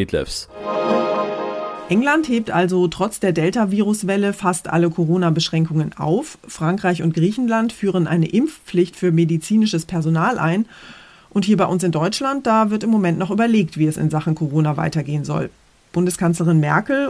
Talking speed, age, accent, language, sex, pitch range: 145 wpm, 30-49, German, German, female, 165-210 Hz